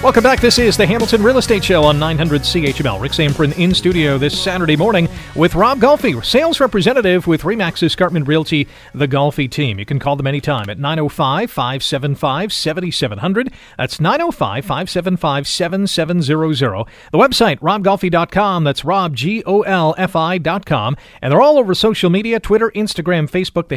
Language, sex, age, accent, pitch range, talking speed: English, male, 40-59, American, 140-185 Hz, 140 wpm